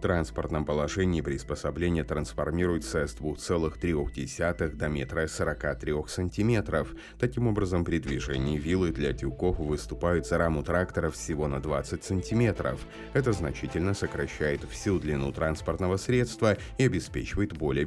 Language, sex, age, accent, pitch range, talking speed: Russian, male, 30-49, native, 75-95 Hz, 120 wpm